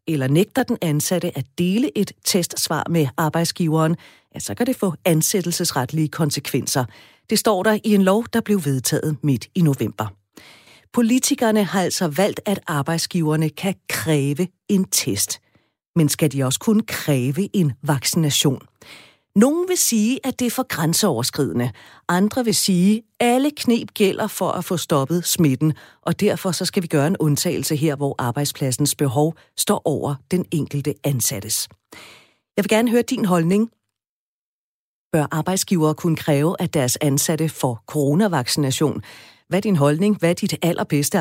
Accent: native